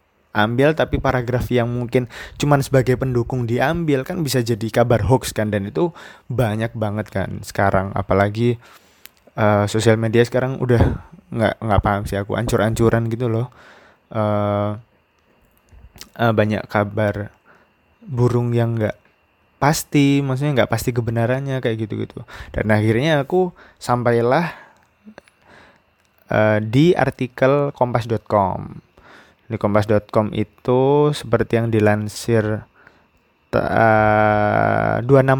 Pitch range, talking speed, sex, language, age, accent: 110-130 Hz, 105 wpm, male, Indonesian, 20-39, native